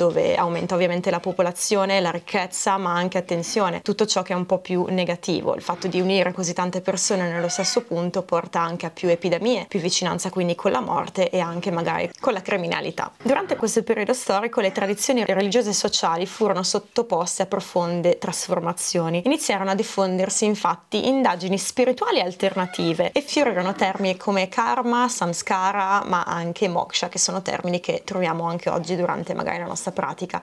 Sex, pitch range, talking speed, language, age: female, 180-225 Hz, 175 wpm, Italian, 20-39